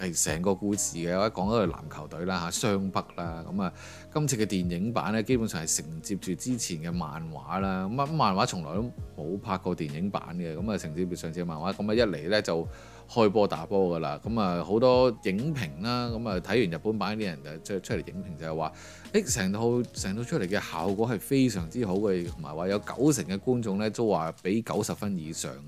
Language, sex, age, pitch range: Chinese, male, 30-49, 90-115 Hz